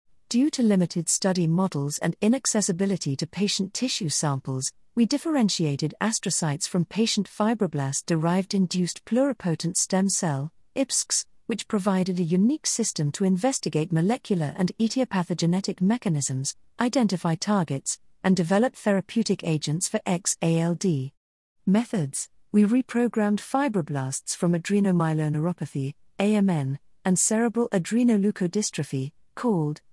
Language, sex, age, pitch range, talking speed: English, female, 50-69, 165-220 Hz, 100 wpm